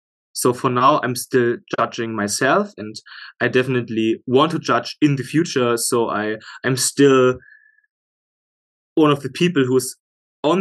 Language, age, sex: English, 20-39, male